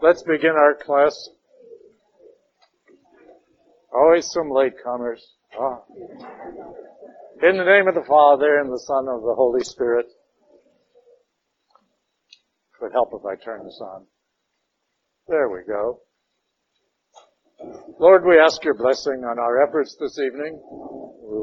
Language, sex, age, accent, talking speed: English, male, 60-79, American, 120 wpm